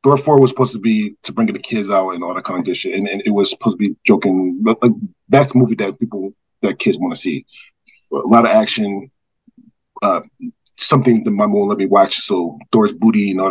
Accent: American